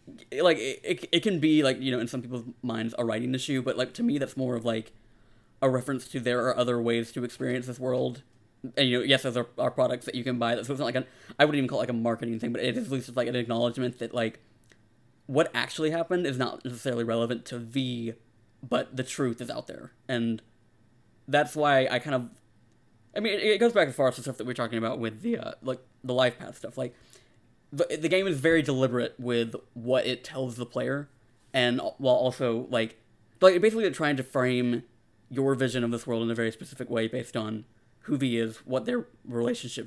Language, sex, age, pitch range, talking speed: English, male, 20-39, 115-130 Hz, 235 wpm